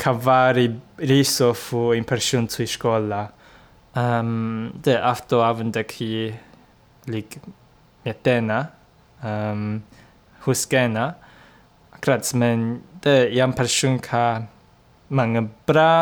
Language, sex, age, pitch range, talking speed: English, male, 20-39, 120-145 Hz, 85 wpm